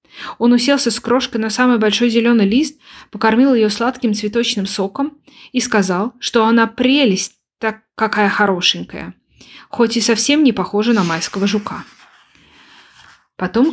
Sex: female